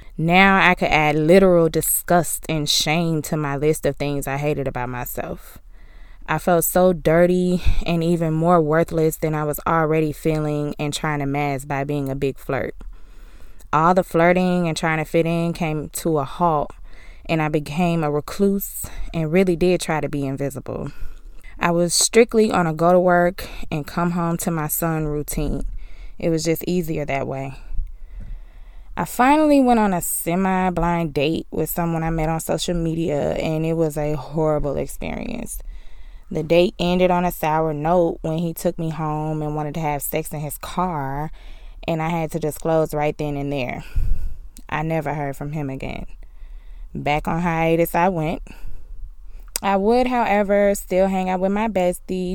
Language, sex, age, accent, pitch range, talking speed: English, female, 20-39, American, 145-175 Hz, 175 wpm